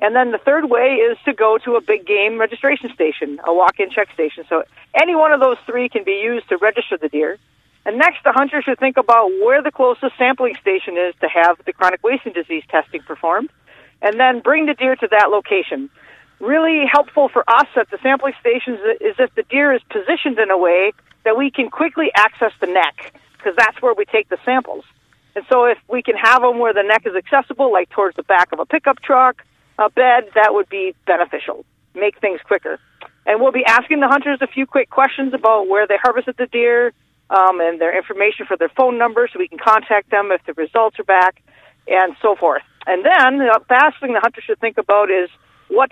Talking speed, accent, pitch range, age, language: 220 wpm, American, 205-275 Hz, 40-59, English